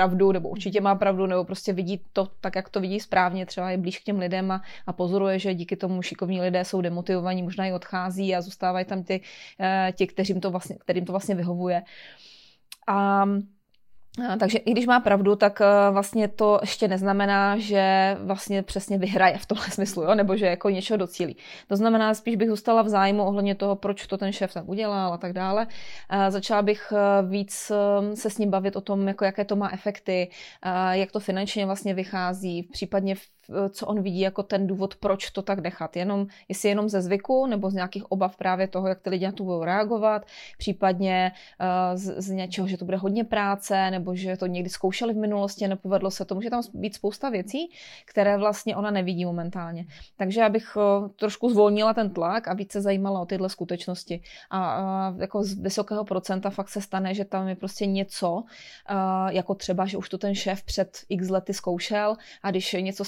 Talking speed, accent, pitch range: 195 wpm, native, 185-205 Hz